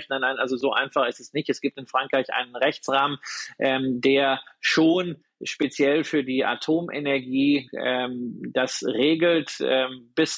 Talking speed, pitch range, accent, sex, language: 140 wpm, 130-155 Hz, German, male, German